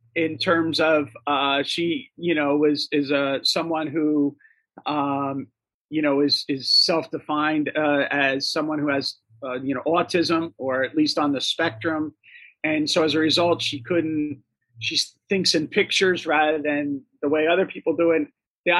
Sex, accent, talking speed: male, American, 170 wpm